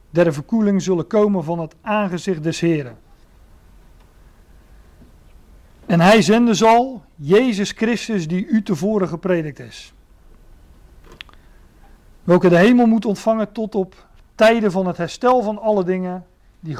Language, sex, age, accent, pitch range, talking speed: Dutch, male, 40-59, Dutch, 165-205 Hz, 125 wpm